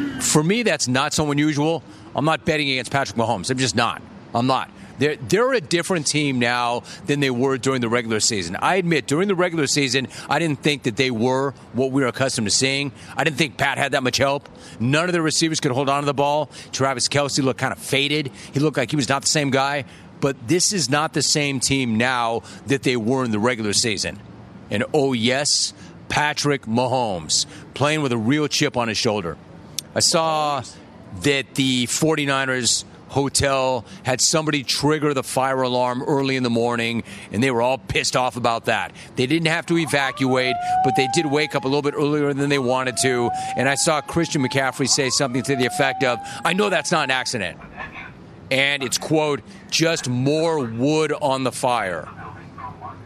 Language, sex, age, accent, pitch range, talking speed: English, male, 40-59, American, 125-150 Hz, 200 wpm